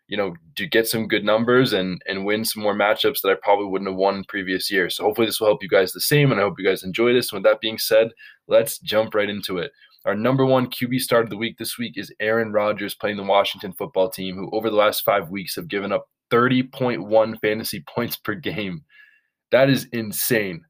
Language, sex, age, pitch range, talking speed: English, male, 20-39, 100-120 Hz, 235 wpm